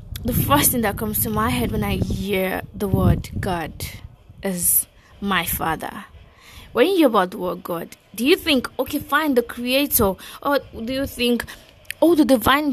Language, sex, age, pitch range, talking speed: English, female, 20-39, 190-250 Hz, 180 wpm